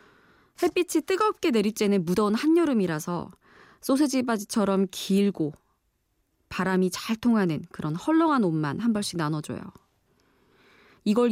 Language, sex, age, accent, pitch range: Korean, female, 20-39, native, 185-275 Hz